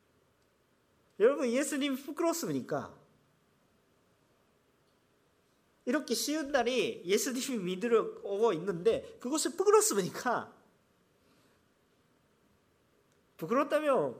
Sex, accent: male, Japanese